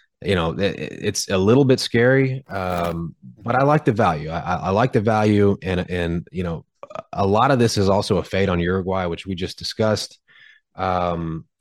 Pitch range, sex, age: 90-110 Hz, male, 30-49